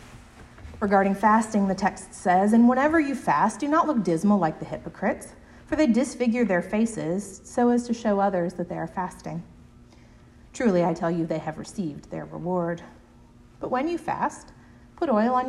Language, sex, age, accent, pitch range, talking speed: English, female, 40-59, American, 170-225 Hz, 180 wpm